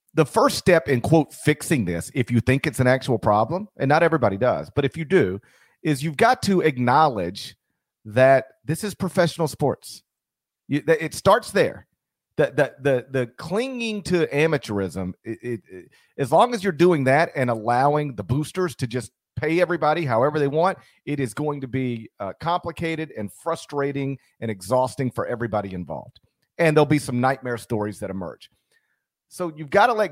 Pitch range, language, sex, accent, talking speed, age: 110-150 Hz, English, male, American, 175 wpm, 40-59